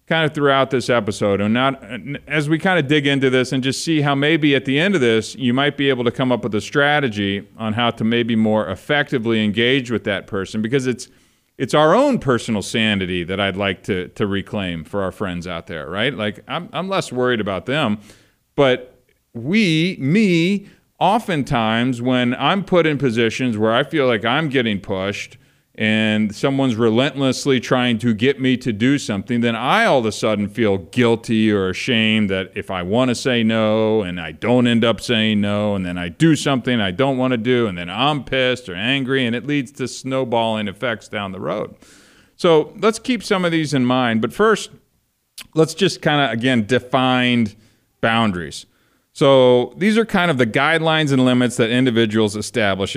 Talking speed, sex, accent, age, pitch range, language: 195 wpm, male, American, 40-59, 105-140 Hz, English